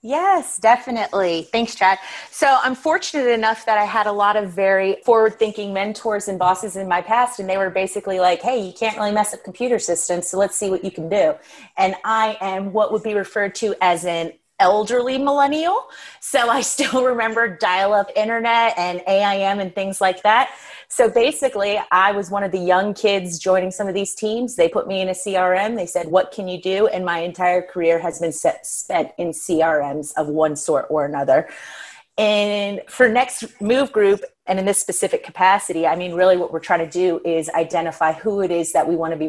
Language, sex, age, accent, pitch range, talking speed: English, female, 30-49, American, 165-220 Hz, 210 wpm